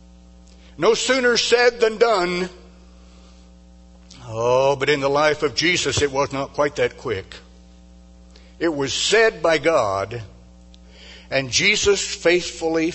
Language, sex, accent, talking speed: English, male, American, 120 wpm